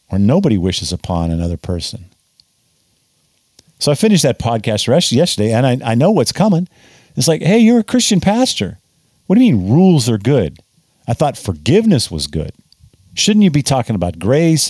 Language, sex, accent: English, male, American